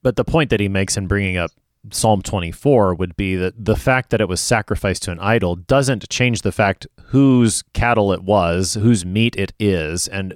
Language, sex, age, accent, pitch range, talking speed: English, male, 30-49, American, 90-115 Hz, 210 wpm